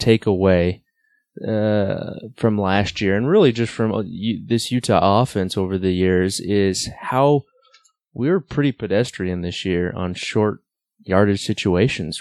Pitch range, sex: 95-120 Hz, male